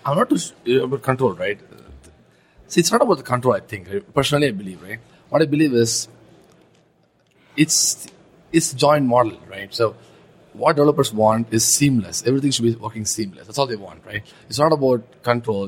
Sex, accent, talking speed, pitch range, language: male, Indian, 190 wpm, 115-145 Hz, English